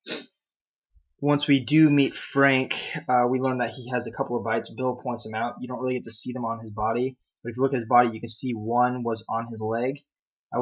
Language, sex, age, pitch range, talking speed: English, male, 20-39, 110-135 Hz, 255 wpm